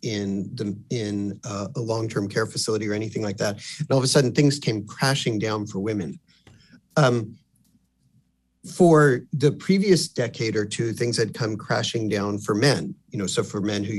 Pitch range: 105-145 Hz